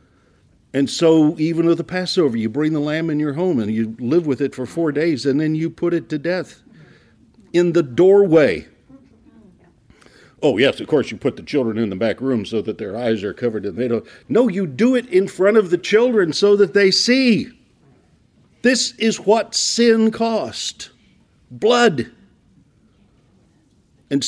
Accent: American